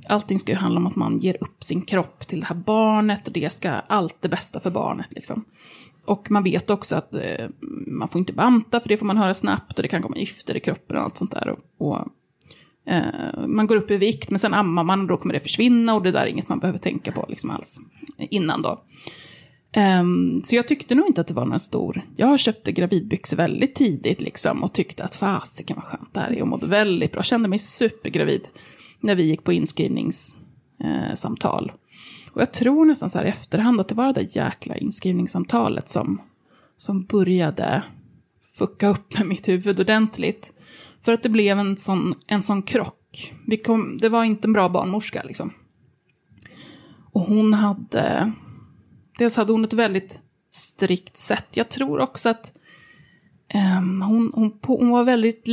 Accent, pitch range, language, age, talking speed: native, 185-230 Hz, Swedish, 30-49, 200 wpm